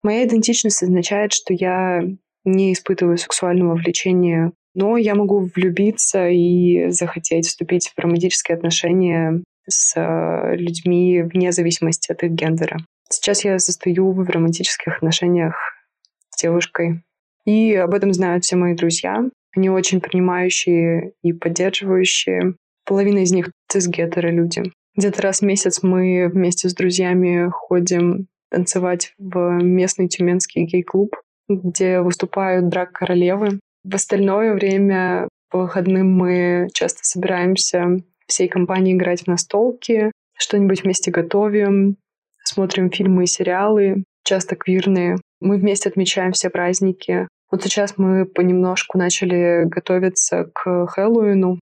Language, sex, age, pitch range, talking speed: Russian, female, 20-39, 175-195 Hz, 120 wpm